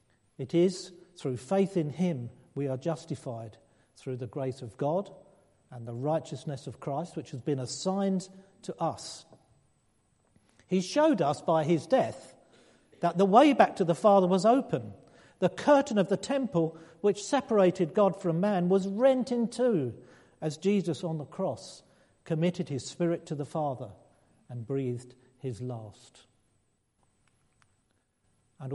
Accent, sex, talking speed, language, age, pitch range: British, male, 145 wpm, English, 50-69, 130-185 Hz